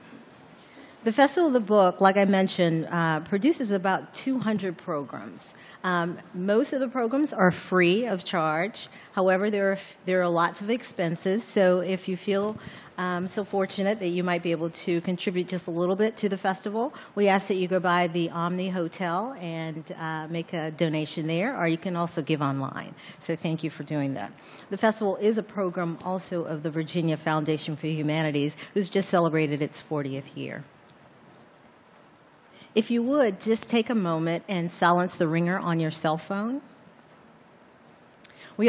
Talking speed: 170 wpm